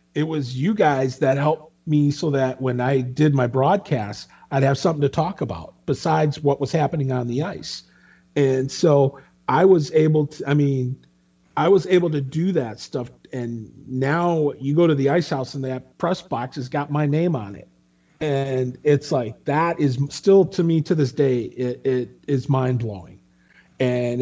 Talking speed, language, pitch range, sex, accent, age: 190 wpm, English, 120-150 Hz, male, American, 40-59